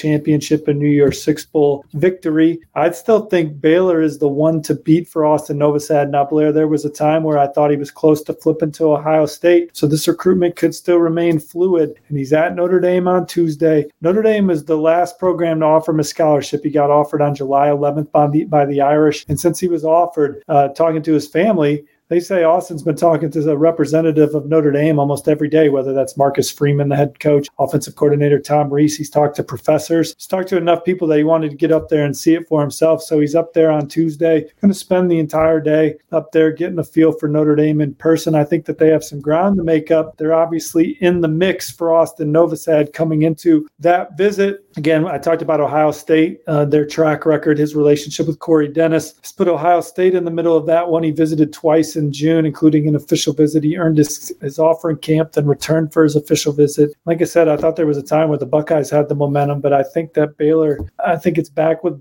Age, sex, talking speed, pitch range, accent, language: 40-59, male, 235 wpm, 150-165 Hz, American, English